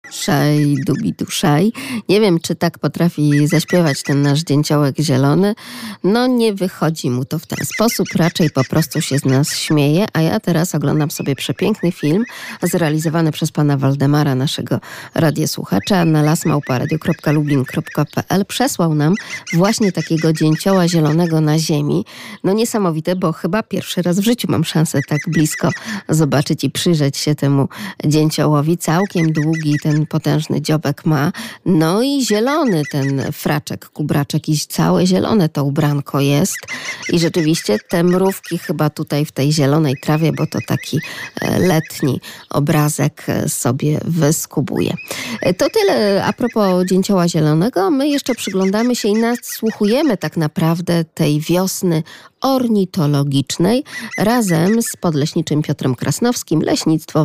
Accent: native